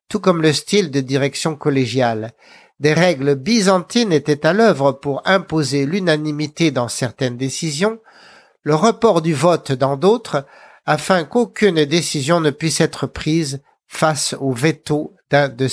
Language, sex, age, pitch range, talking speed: French, male, 60-79, 140-190 Hz, 140 wpm